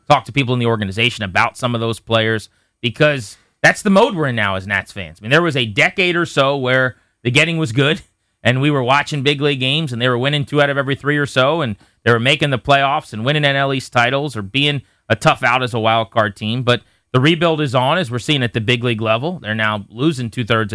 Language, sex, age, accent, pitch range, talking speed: English, male, 30-49, American, 115-145 Hz, 255 wpm